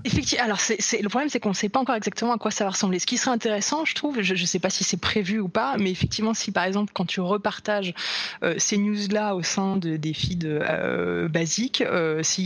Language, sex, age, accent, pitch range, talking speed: French, female, 20-39, French, 165-205 Hz, 240 wpm